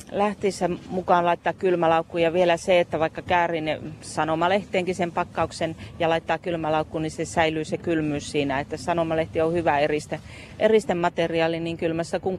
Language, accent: Finnish, native